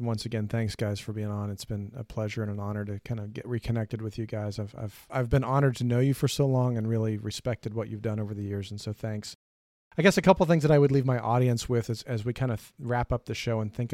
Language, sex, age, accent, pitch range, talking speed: English, male, 40-59, American, 110-140 Hz, 295 wpm